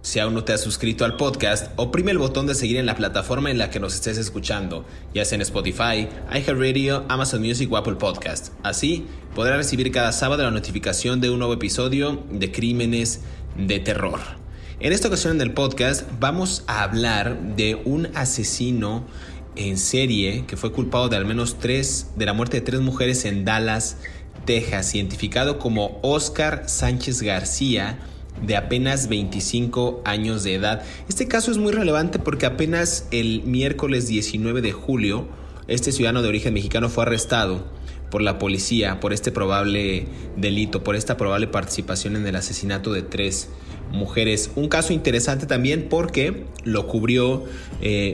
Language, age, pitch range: Spanish, 30-49, 100-125 Hz